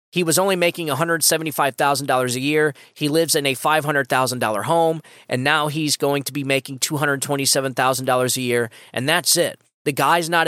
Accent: American